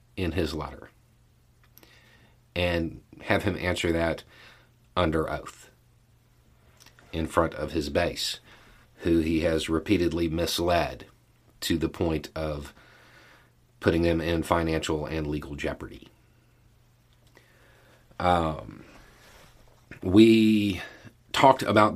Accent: American